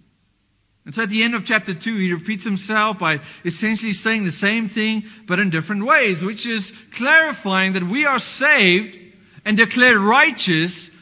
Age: 40-59